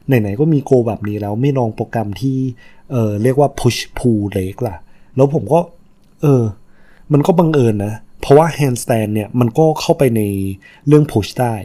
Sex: male